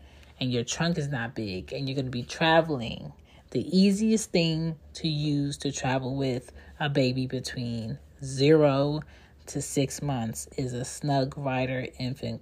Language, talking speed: English, 155 wpm